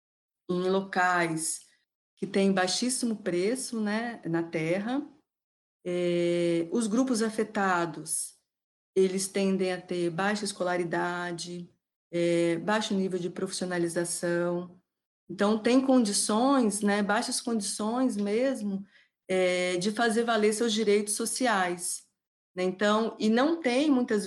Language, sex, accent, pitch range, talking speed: Portuguese, female, Brazilian, 180-230 Hz, 110 wpm